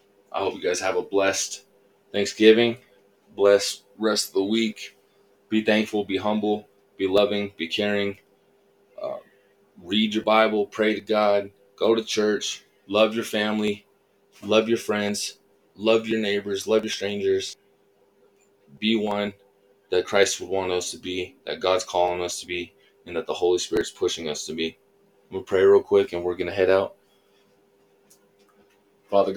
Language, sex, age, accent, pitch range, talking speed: English, male, 20-39, American, 100-110 Hz, 160 wpm